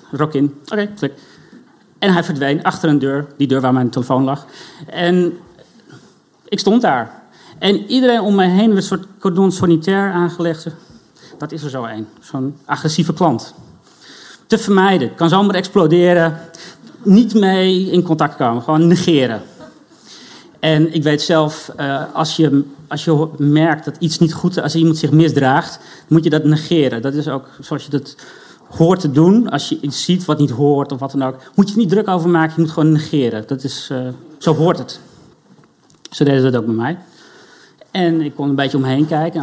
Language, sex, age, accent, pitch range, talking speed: Dutch, male, 40-59, Dutch, 145-180 Hz, 190 wpm